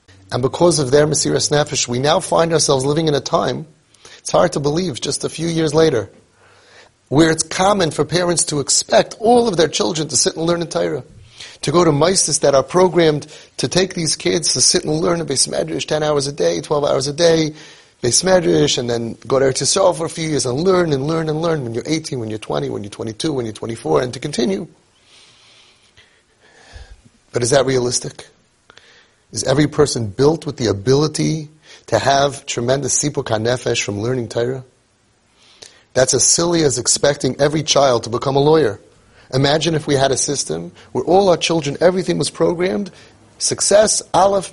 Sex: male